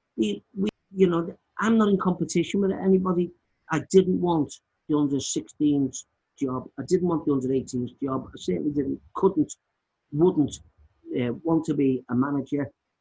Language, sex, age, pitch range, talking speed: English, male, 50-69, 130-165 Hz, 150 wpm